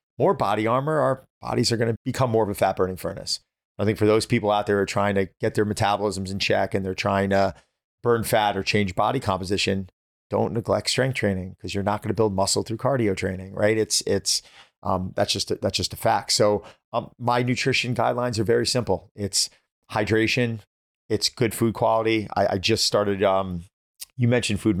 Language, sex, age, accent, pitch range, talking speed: English, male, 40-59, American, 95-110 Hz, 215 wpm